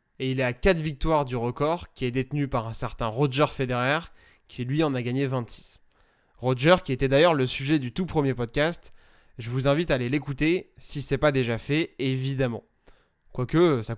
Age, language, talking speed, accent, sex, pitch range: 20-39, French, 200 wpm, French, male, 130-160 Hz